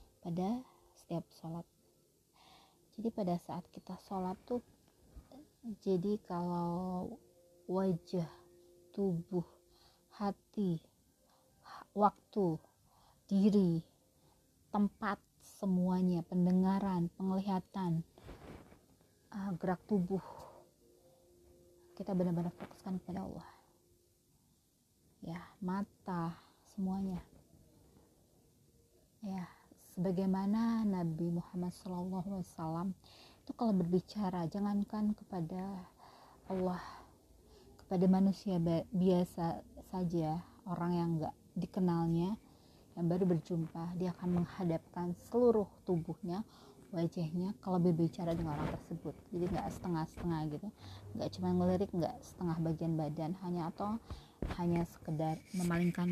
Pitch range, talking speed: 165-190 Hz, 85 wpm